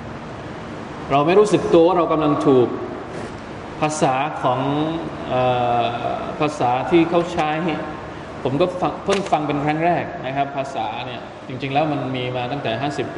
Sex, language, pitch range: male, Thai, 130-175 Hz